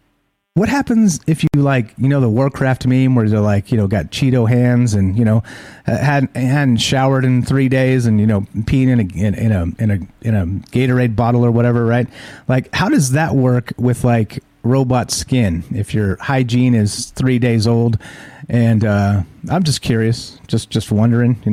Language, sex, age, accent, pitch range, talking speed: English, male, 30-49, American, 115-135 Hz, 195 wpm